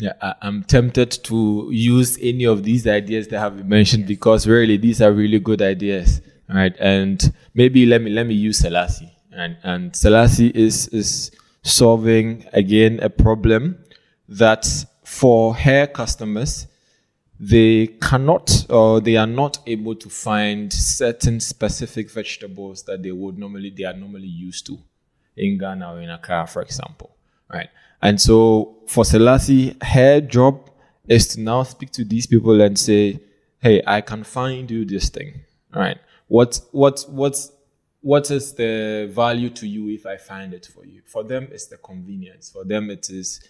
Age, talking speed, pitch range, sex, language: 20-39, 165 wpm, 100-125 Hz, male, English